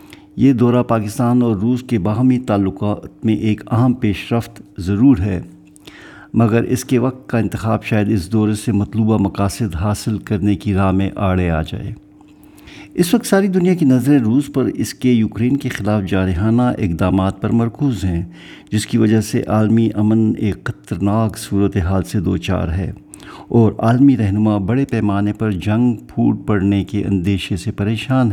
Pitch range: 100-120 Hz